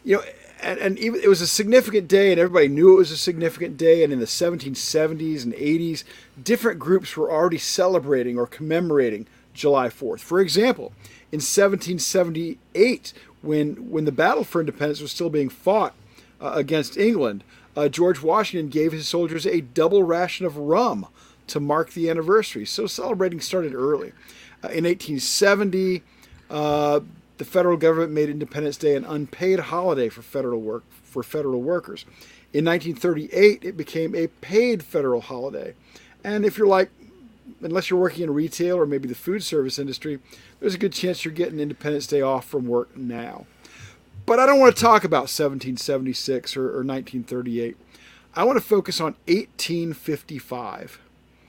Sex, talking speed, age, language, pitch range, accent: male, 160 wpm, 40-59, English, 140-185 Hz, American